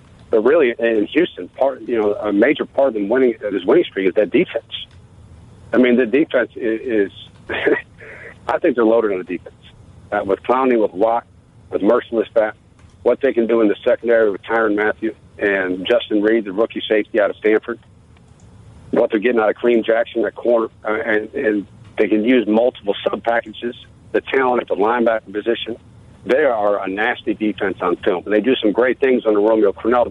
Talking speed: 195 wpm